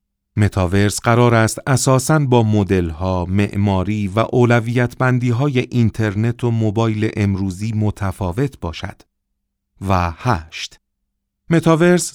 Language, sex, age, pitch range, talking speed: Persian, male, 40-59, 95-130 Hz, 90 wpm